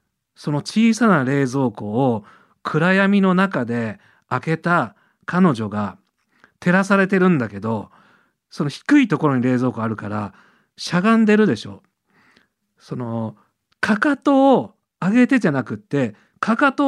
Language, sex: Japanese, male